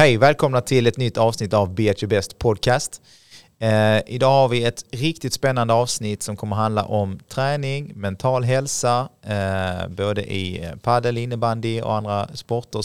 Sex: male